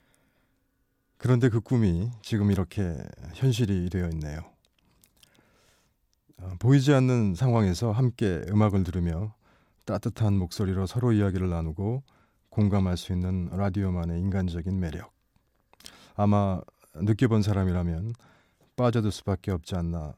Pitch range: 90-110 Hz